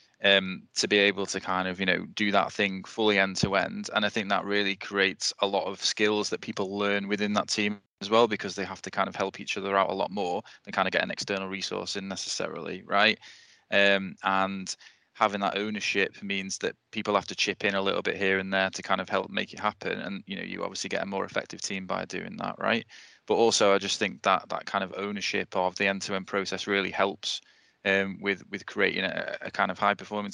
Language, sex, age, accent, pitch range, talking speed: English, male, 20-39, British, 95-105 Hz, 240 wpm